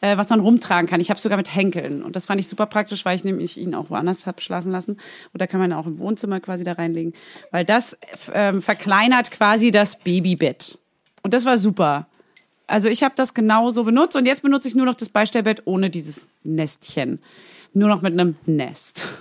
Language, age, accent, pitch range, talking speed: German, 30-49, German, 185-250 Hz, 210 wpm